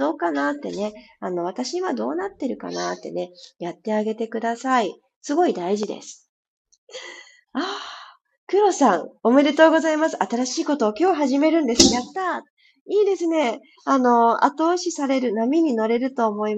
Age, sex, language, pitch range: 20-39, female, Japanese, 180-290 Hz